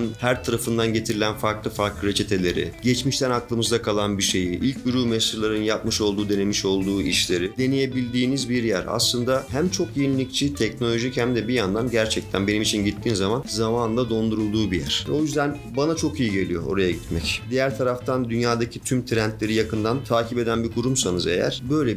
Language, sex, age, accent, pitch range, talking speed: Turkish, male, 40-59, native, 100-120 Hz, 165 wpm